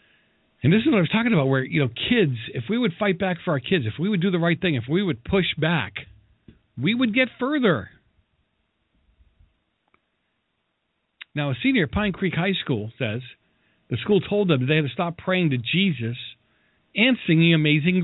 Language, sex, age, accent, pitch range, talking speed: English, male, 50-69, American, 110-160 Hz, 195 wpm